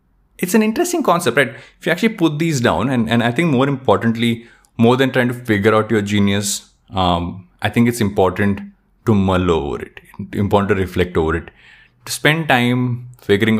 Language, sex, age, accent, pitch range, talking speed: English, male, 20-39, Indian, 105-155 Hz, 195 wpm